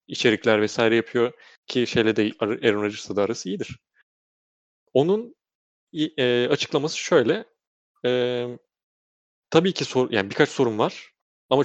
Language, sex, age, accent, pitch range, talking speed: Turkish, male, 30-49, native, 110-150 Hz, 120 wpm